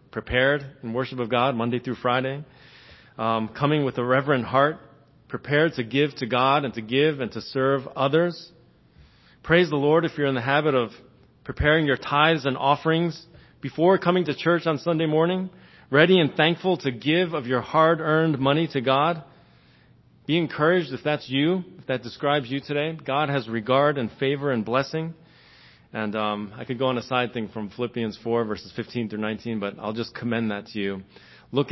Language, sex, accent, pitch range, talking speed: English, male, American, 115-140 Hz, 185 wpm